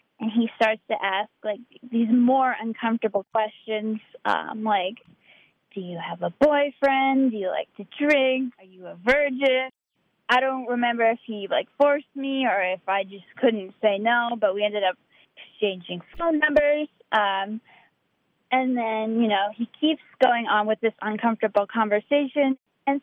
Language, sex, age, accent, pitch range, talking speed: English, female, 10-29, American, 205-265 Hz, 160 wpm